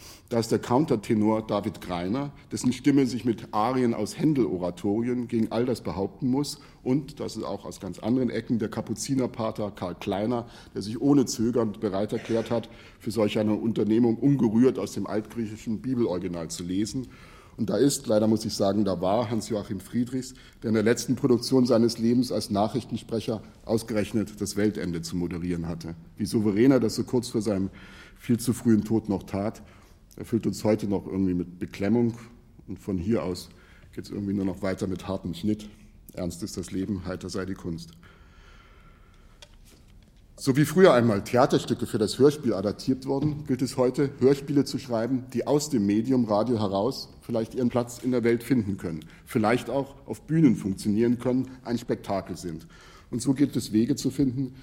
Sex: male